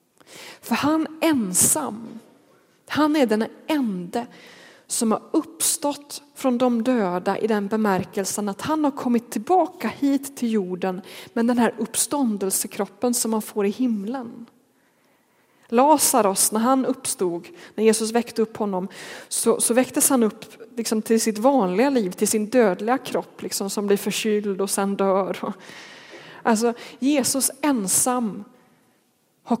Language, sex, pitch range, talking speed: Swedish, female, 205-255 Hz, 135 wpm